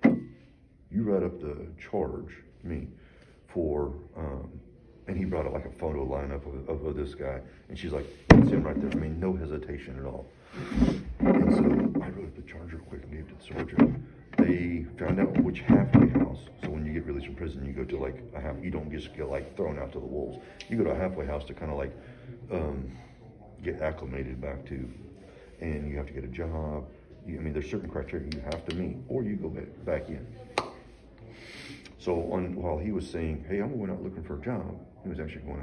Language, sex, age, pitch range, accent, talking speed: English, male, 40-59, 70-80 Hz, American, 220 wpm